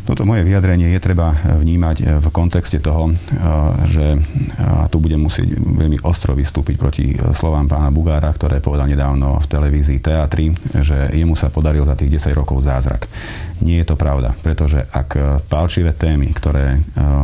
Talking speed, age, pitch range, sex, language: 155 wpm, 40-59, 75-80 Hz, male, Slovak